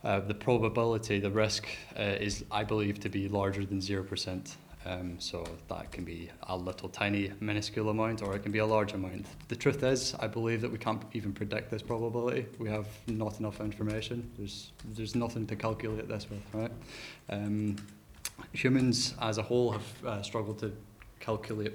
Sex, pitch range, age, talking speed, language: male, 100-115 Hz, 20-39, 180 wpm, English